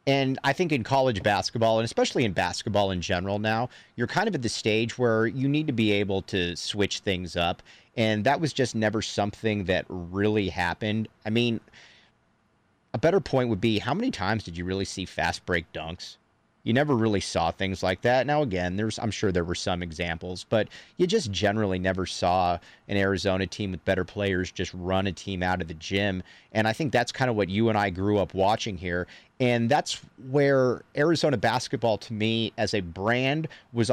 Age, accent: 40-59, American